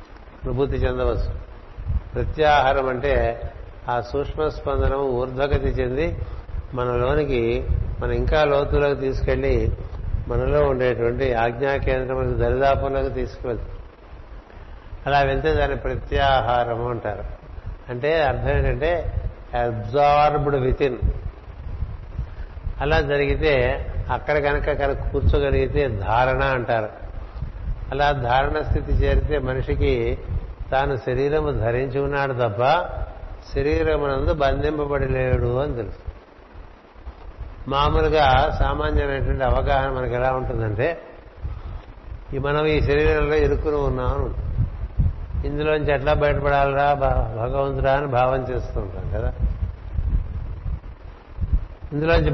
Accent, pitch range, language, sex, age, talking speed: native, 90-140 Hz, Telugu, male, 60-79, 85 wpm